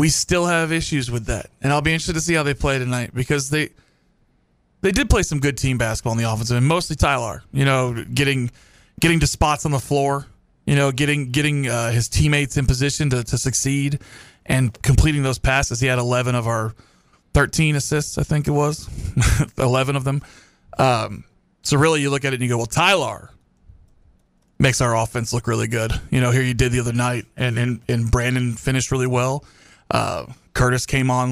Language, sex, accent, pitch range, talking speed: English, male, American, 115-140 Hz, 205 wpm